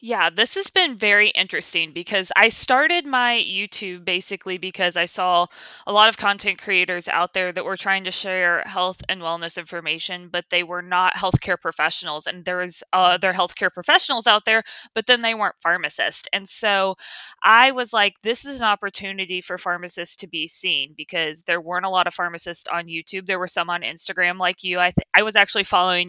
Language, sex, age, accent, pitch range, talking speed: English, female, 20-39, American, 175-205 Hz, 200 wpm